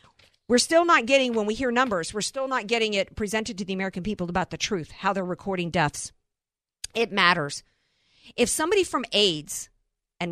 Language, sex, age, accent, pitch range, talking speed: English, female, 50-69, American, 170-225 Hz, 185 wpm